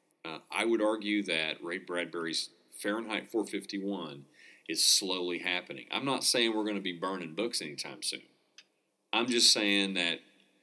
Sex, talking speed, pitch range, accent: male, 165 wpm, 85-115 Hz, American